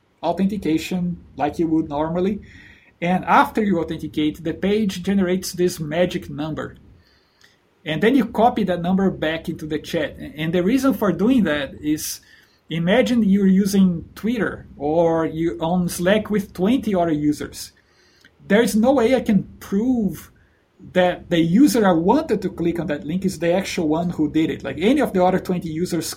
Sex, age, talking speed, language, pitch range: male, 50-69, 170 wpm, English, 160-195 Hz